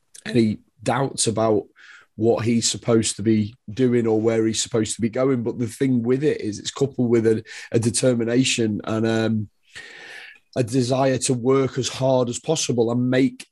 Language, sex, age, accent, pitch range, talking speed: English, male, 30-49, British, 110-125 Hz, 180 wpm